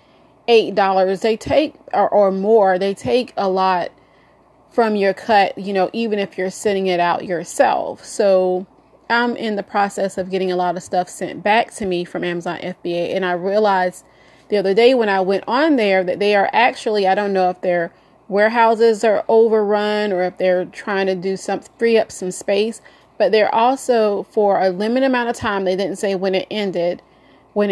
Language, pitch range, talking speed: English, 185-215 Hz, 195 wpm